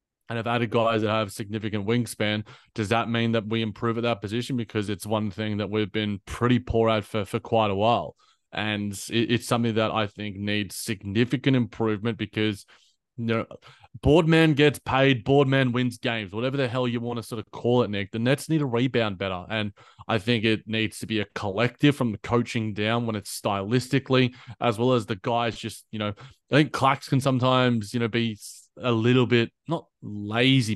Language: English